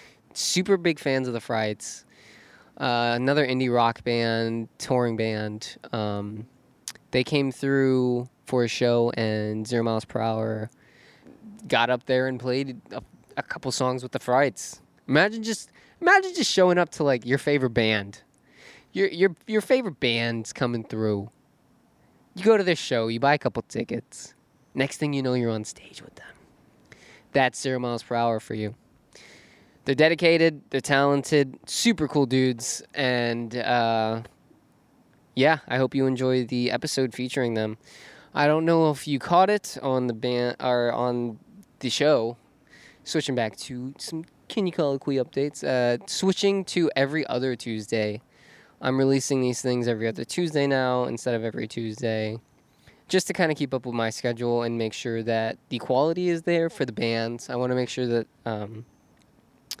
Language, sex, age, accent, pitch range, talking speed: English, male, 20-39, American, 115-145 Hz, 165 wpm